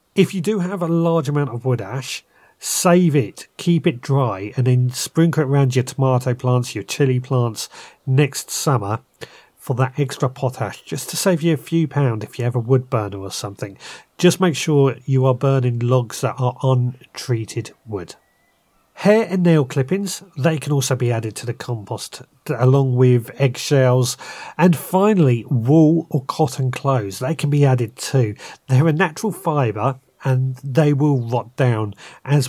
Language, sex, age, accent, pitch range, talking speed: English, male, 40-59, British, 120-150 Hz, 175 wpm